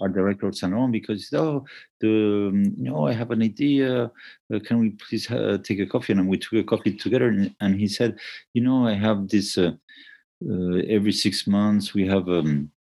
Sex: male